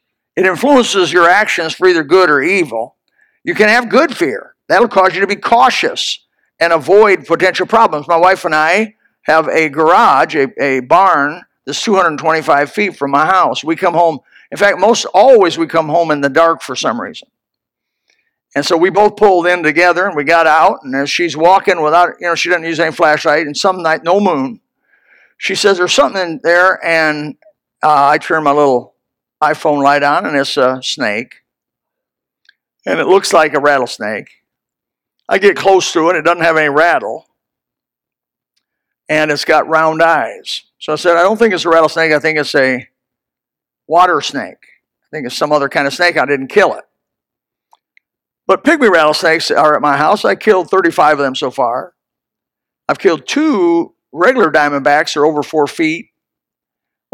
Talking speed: 185 wpm